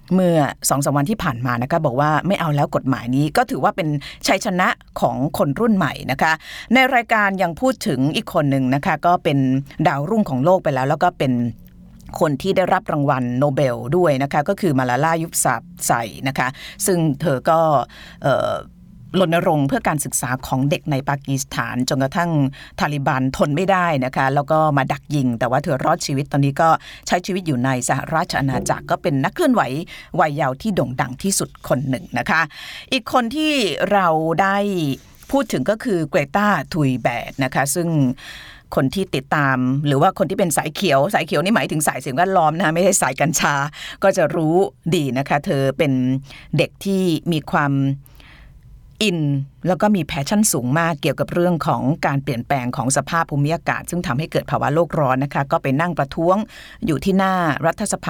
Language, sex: Thai, female